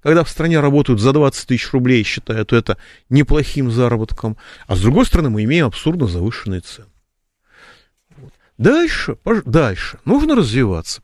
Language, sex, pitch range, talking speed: Russian, male, 100-145 Hz, 140 wpm